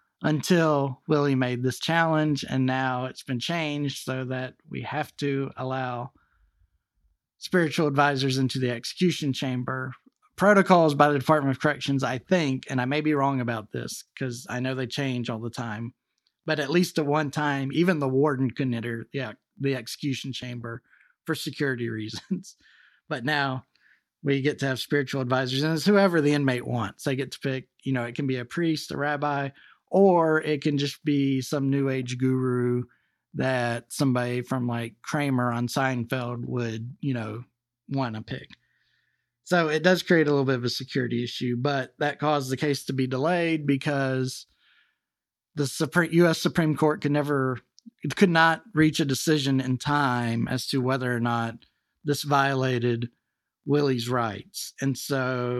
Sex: male